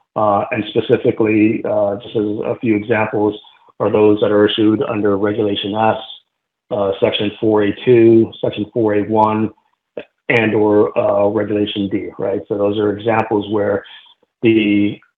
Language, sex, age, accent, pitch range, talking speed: English, male, 50-69, American, 105-115 Hz, 130 wpm